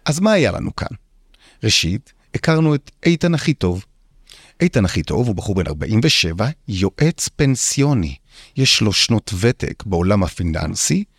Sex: male